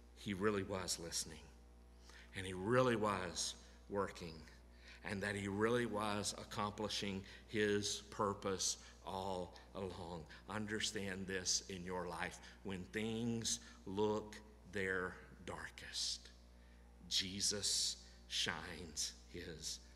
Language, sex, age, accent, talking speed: English, male, 50-69, American, 95 wpm